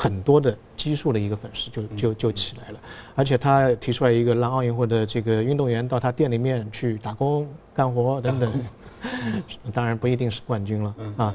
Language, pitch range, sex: Chinese, 110-130 Hz, male